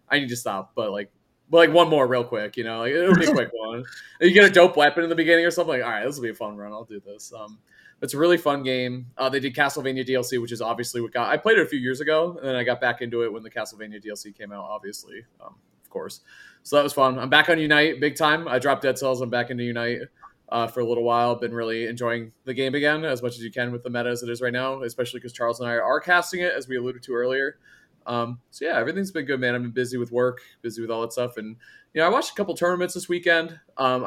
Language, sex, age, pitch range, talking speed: English, male, 20-39, 120-155 Hz, 290 wpm